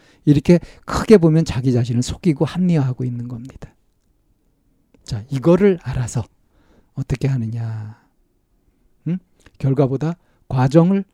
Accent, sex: native, male